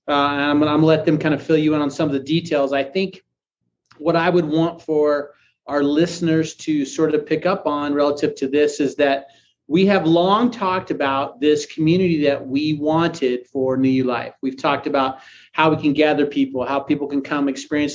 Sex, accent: male, American